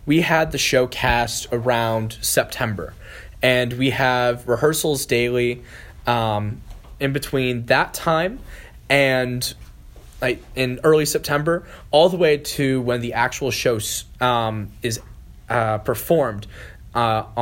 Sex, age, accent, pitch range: male, 10-29, American, 105-130 Hz